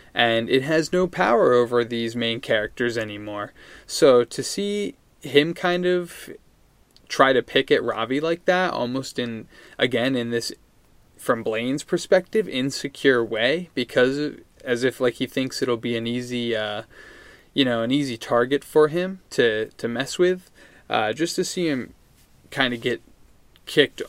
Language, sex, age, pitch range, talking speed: English, male, 20-39, 115-150 Hz, 160 wpm